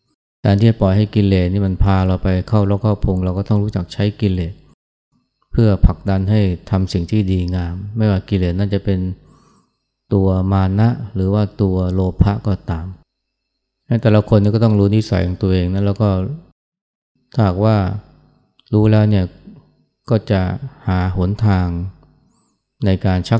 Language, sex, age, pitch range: Thai, male, 20-39, 90-105 Hz